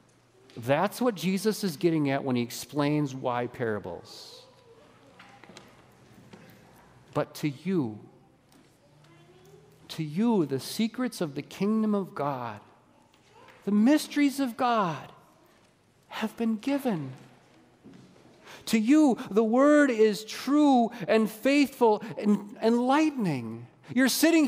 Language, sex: English, male